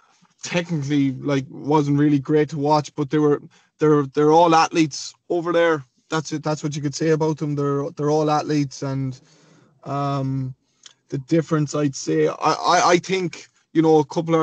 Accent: Irish